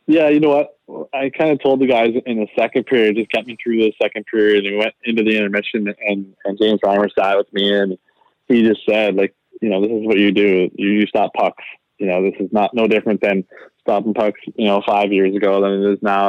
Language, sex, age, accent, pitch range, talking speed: English, male, 20-39, American, 100-115 Hz, 245 wpm